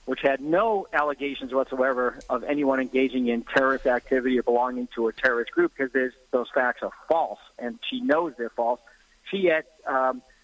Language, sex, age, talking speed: English, male, 50-69, 170 wpm